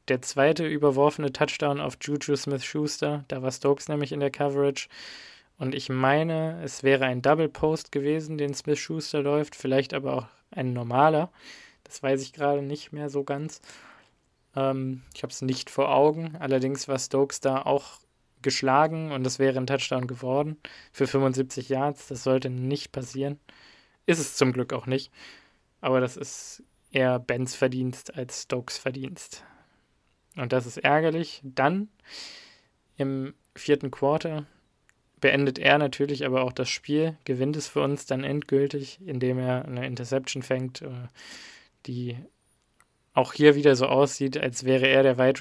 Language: German